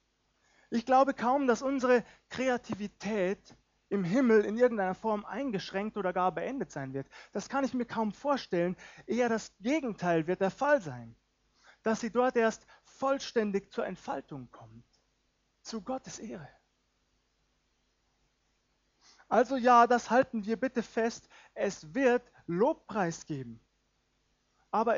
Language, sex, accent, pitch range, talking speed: German, male, German, 165-230 Hz, 125 wpm